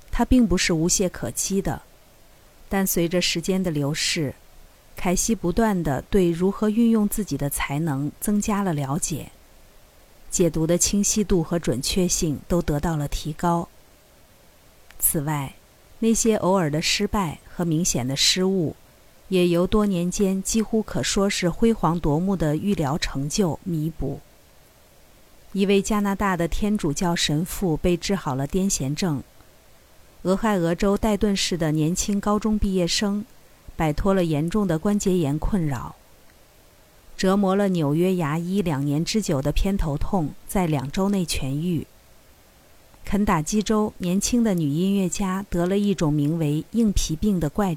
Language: Chinese